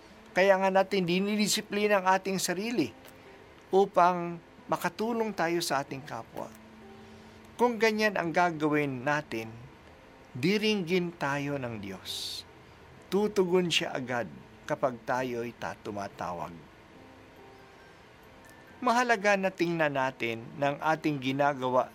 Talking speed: 95 wpm